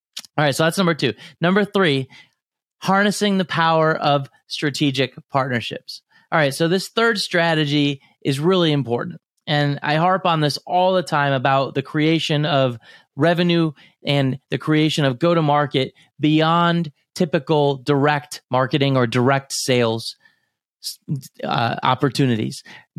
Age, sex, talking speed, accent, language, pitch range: 30-49, male, 130 wpm, American, English, 135-170 Hz